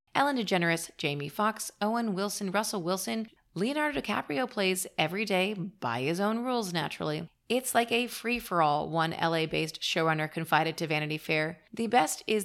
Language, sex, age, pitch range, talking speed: English, female, 30-49, 160-215 Hz, 155 wpm